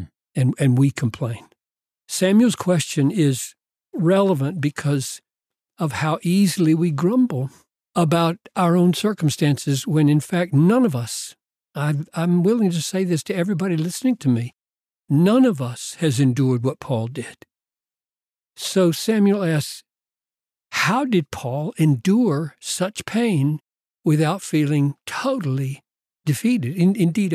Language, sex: English, male